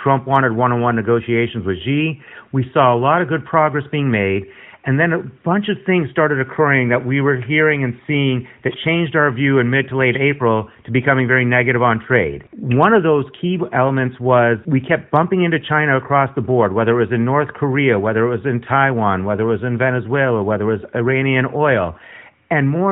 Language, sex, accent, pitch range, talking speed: English, male, American, 125-150 Hz, 210 wpm